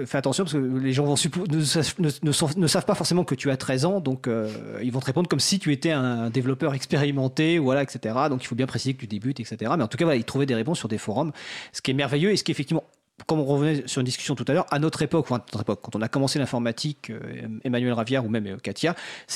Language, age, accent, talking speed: French, 40-59, French, 275 wpm